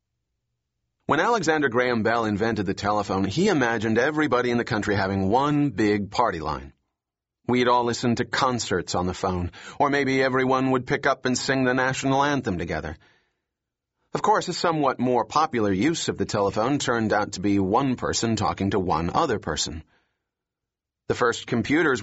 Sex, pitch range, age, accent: male, 100-130 Hz, 40-59, American